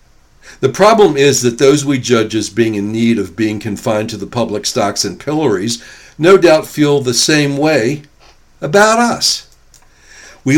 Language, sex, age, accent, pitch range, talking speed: English, male, 60-79, American, 110-140 Hz, 165 wpm